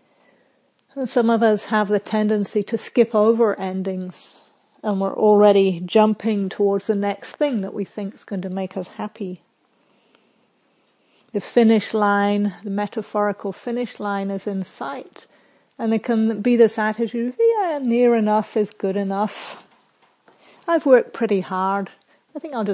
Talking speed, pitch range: 150 wpm, 200-230 Hz